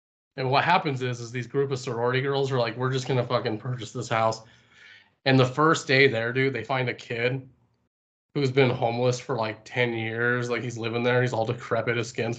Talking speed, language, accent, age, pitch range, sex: 225 wpm, English, American, 20-39, 120-140 Hz, male